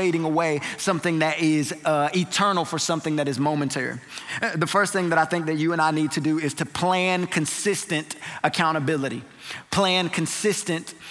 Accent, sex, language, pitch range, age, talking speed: American, male, English, 175-230 Hz, 20-39, 165 wpm